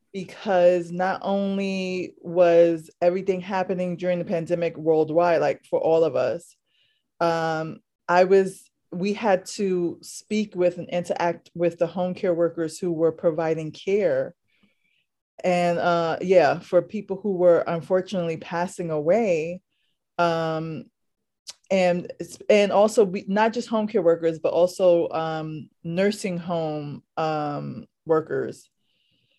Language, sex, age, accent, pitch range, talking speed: English, female, 20-39, American, 165-195 Hz, 125 wpm